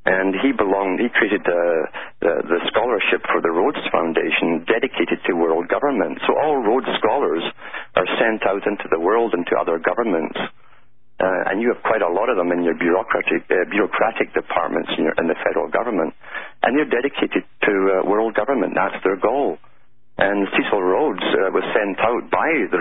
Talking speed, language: 185 wpm, English